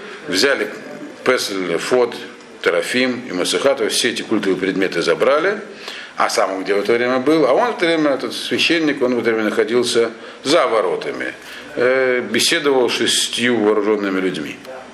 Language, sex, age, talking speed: Russian, male, 50-69, 155 wpm